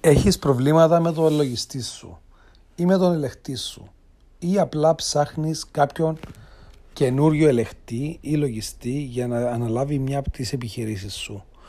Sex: male